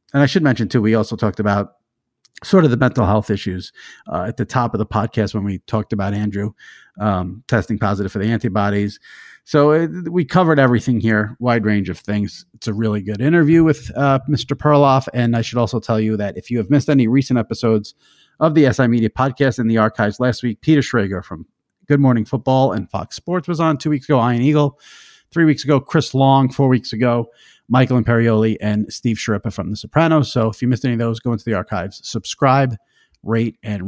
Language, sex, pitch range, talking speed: English, male, 105-140 Hz, 215 wpm